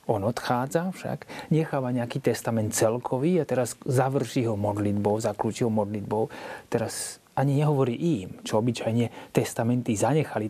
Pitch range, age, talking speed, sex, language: 115-155 Hz, 30-49, 125 wpm, male, Slovak